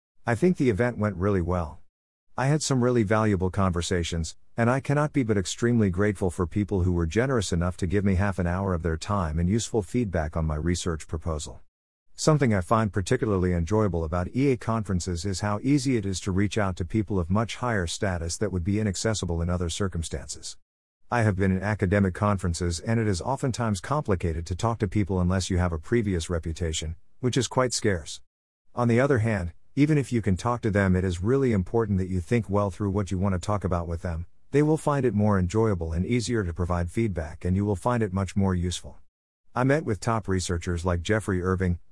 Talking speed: 215 wpm